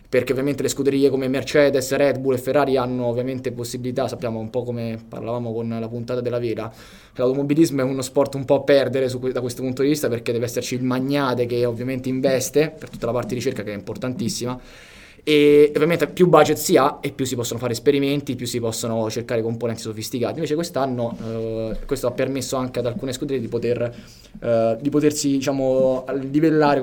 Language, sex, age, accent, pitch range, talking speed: Italian, male, 20-39, native, 125-145 Hz, 200 wpm